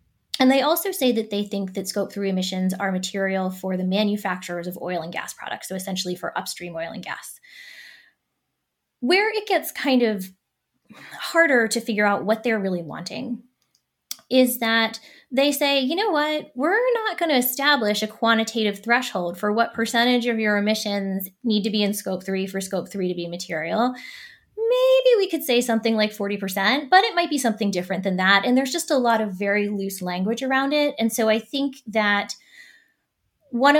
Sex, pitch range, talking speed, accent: female, 195-270 Hz, 190 wpm, American